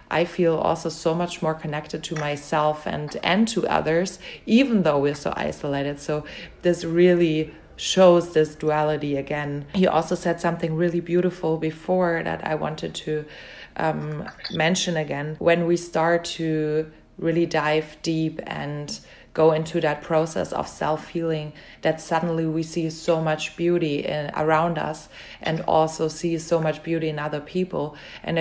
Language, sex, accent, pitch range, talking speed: English, female, German, 155-175 Hz, 150 wpm